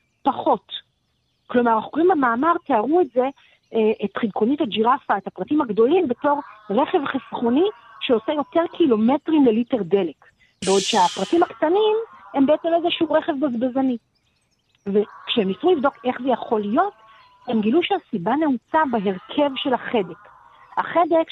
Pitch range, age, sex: 220-305 Hz, 50-69, female